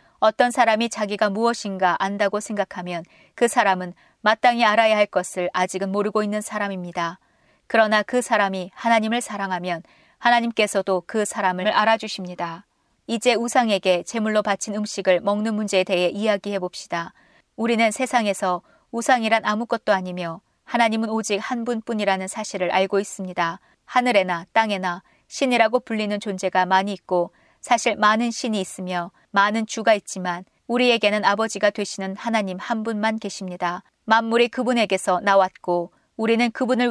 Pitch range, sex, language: 190-230 Hz, female, Korean